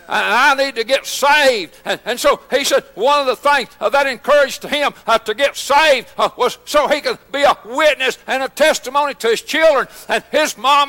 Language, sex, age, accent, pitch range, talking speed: English, male, 60-79, American, 255-300 Hz, 215 wpm